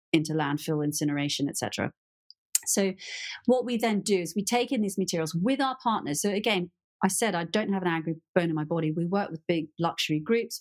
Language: English